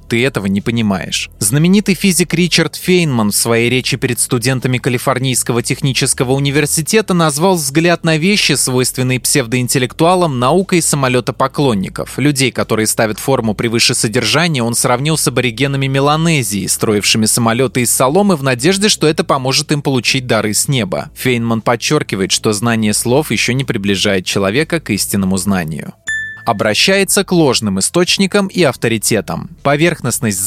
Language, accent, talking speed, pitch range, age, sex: Russian, native, 135 wpm, 115-160 Hz, 20-39, male